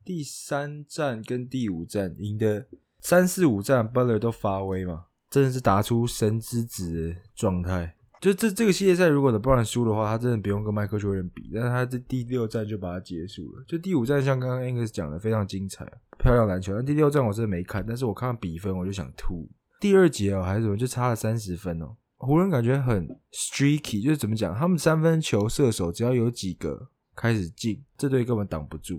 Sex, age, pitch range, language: male, 20-39, 95-130 Hz, English